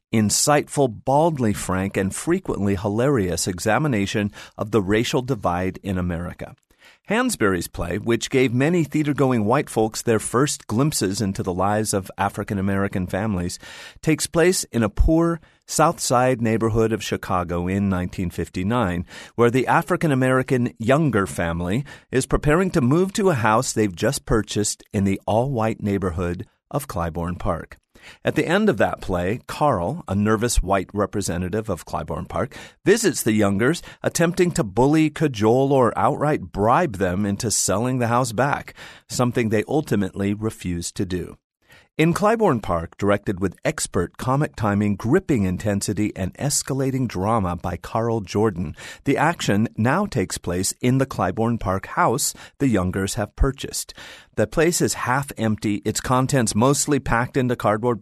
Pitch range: 95-130 Hz